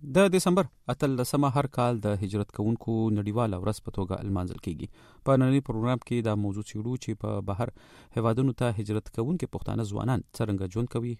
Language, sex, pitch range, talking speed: Urdu, male, 100-125 Hz, 165 wpm